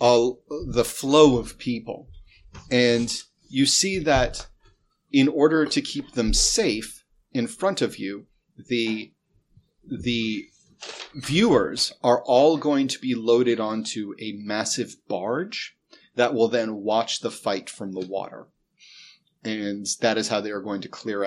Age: 30-49